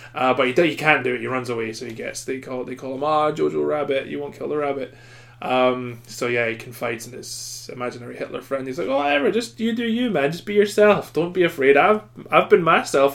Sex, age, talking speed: male, 20-39, 255 wpm